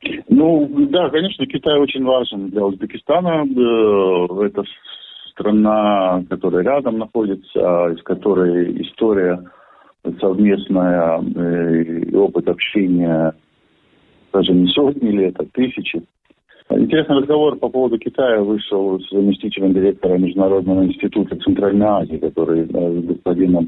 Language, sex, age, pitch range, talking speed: Russian, male, 50-69, 85-115 Hz, 105 wpm